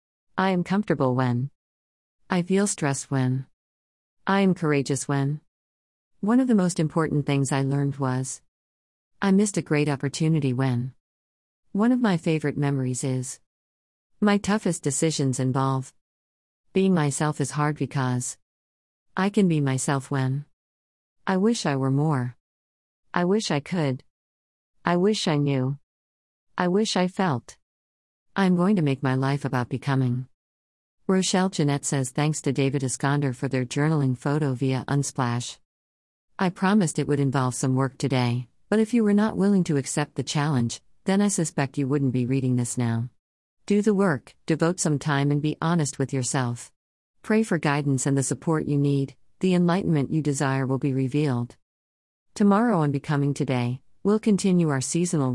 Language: English